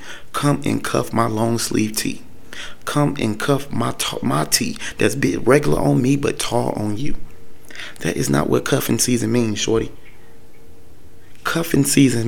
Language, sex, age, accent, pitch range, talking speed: English, male, 30-49, American, 100-125 Hz, 160 wpm